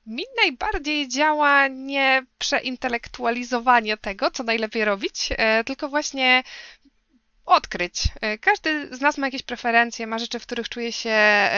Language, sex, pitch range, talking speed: Polish, female, 205-275 Hz, 125 wpm